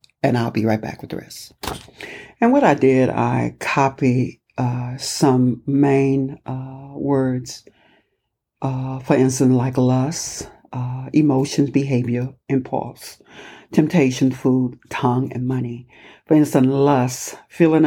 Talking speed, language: 125 wpm, English